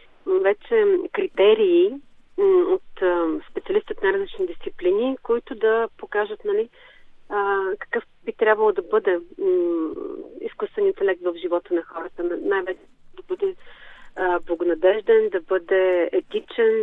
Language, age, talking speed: Bulgarian, 30-49, 105 wpm